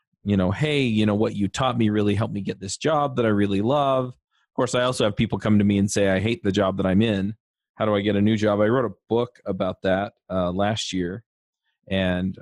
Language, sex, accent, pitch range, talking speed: English, male, American, 100-115 Hz, 260 wpm